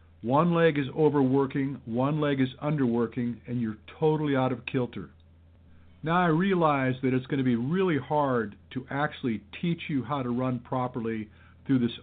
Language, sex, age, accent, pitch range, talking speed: English, male, 50-69, American, 115-145 Hz, 170 wpm